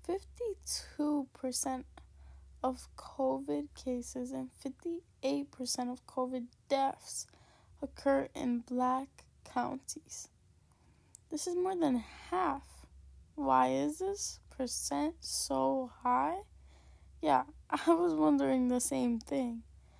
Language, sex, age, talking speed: English, female, 10-29, 90 wpm